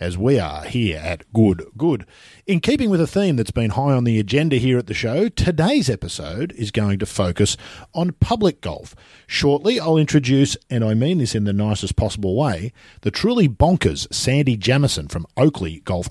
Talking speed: 190 wpm